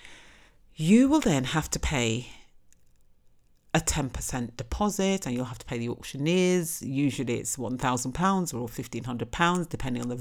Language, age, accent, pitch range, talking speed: English, 50-69, British, 120-170 Hz, 140 wpm